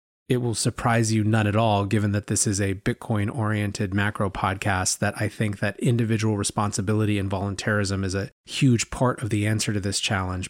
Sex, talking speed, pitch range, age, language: male, 190 wpm, 105-130 Hz, 30-49, English